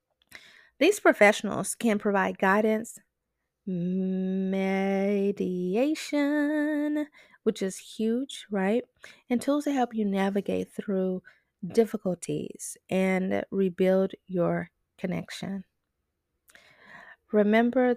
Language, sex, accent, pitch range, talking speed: English, female, American, 185-225 Hz, 75 wpm